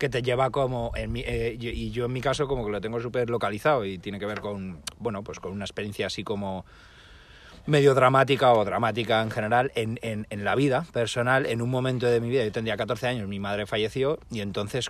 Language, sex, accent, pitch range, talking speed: Spanish, male, Spanish, 105-130 Hz, 235 wpm